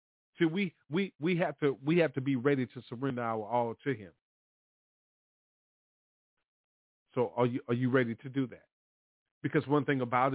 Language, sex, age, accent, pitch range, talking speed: English, male, 40-59, American, 120-165 Hz, 175 wpm